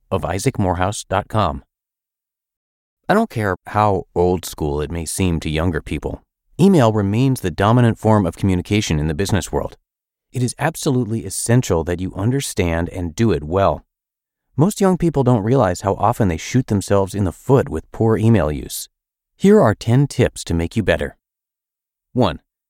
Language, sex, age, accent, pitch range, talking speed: English, male, 30-49, American, 85-110 Hz, 160 wpm